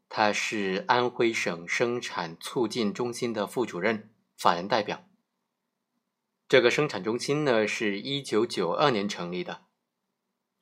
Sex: male